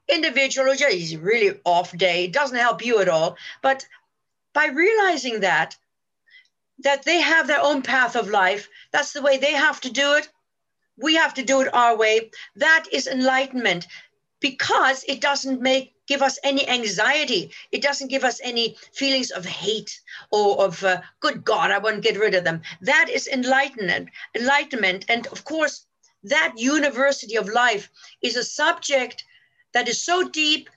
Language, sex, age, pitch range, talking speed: English, female, 50-69, 225-300 Hz, 170 wpm